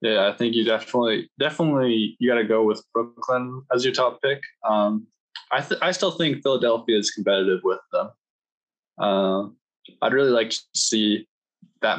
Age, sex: 20-39, male